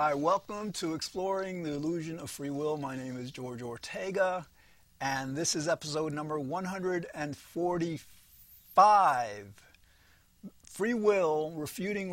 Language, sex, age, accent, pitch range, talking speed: English, male, 40-59, American, 140-185 Hz, 115 wpm